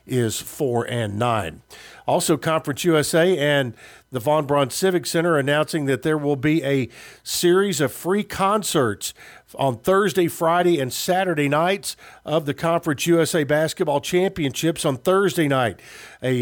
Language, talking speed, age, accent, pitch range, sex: English, 145 wpm, 50-69, American, 140-180 Hz, male